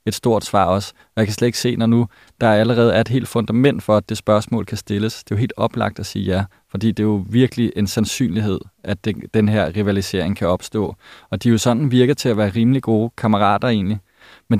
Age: 20-39